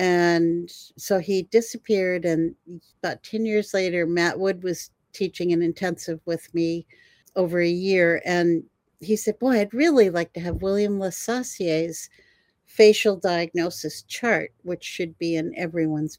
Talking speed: 145 wpm